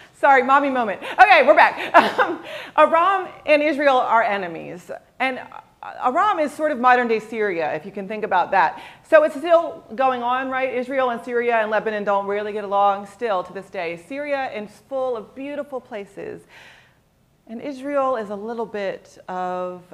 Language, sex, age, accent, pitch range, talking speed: English, female, 40-59, American, 190-255 Hz, 170 wpm